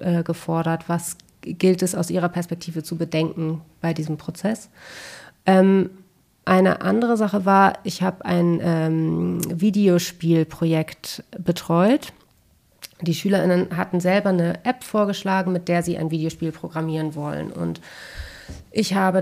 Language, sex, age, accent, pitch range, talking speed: German, female, 30-49, German, 175-225 Hz, 130 wpm